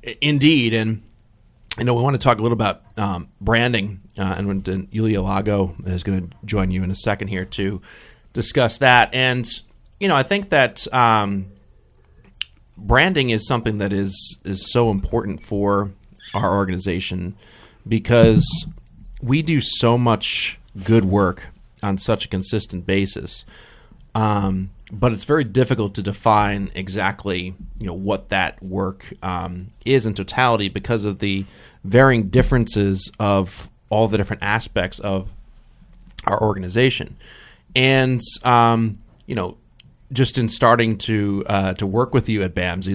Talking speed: 145 wpm